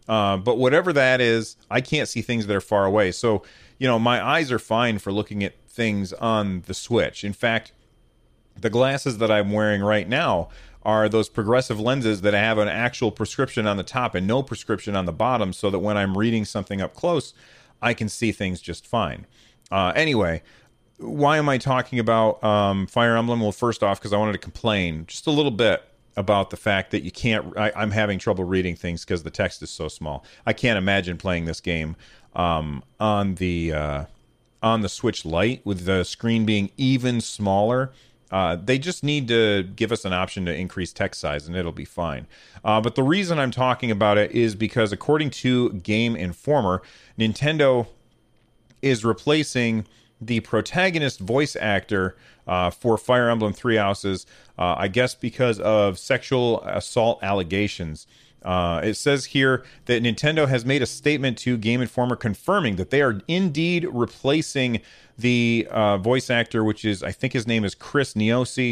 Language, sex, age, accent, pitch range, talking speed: English, male, 40-59, American, 100-125 Hz, 185 wpm